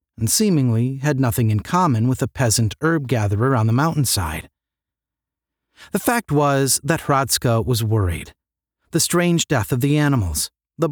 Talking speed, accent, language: 150 wpm, American, English